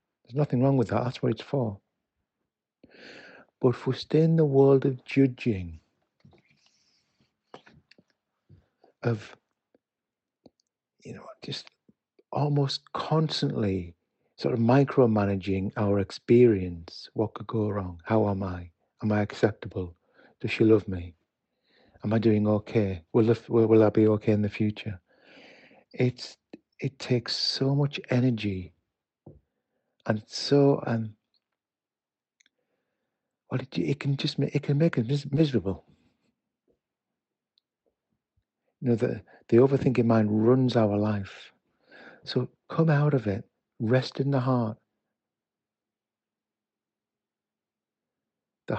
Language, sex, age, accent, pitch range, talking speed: English, male, 60-79, British, 105-135 Hz, 115 wpm